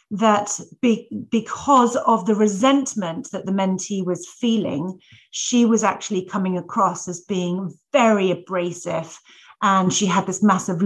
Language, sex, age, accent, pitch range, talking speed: English, female, 40-59, British, 175-205 Hz, 140 wpm